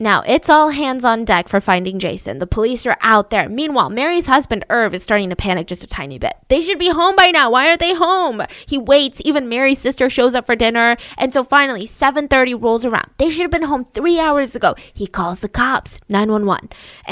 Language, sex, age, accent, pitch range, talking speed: English, female, 10-29, American, 235-315 Hz, 225 wpm